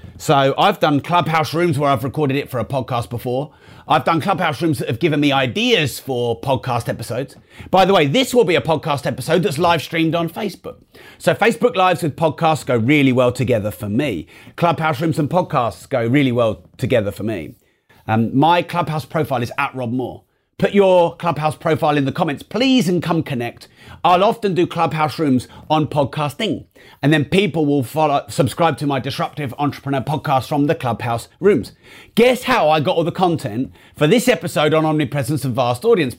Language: English